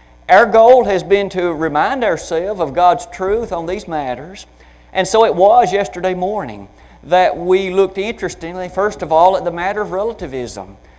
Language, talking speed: English, 170 wpm